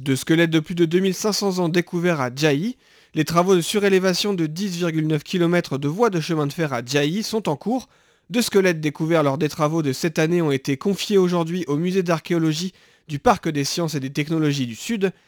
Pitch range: 145-185 Hz